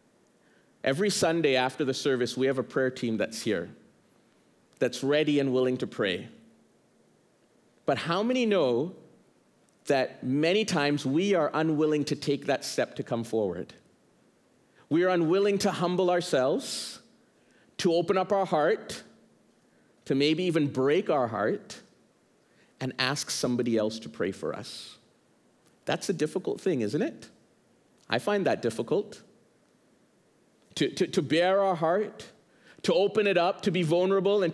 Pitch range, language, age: 145-185 Hz, English, 40-59